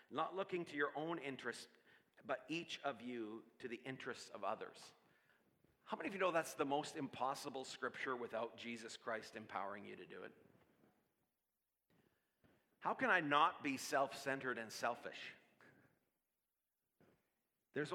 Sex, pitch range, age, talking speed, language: male, 135-170 Hz, 40-59, 140 wpm, English